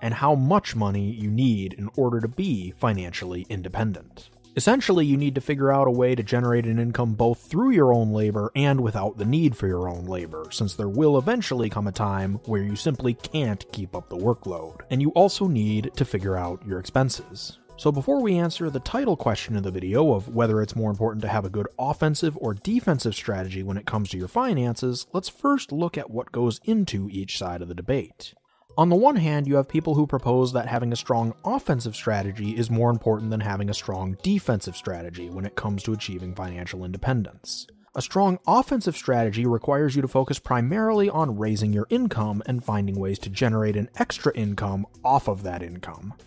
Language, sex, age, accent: English, male, 30-49, American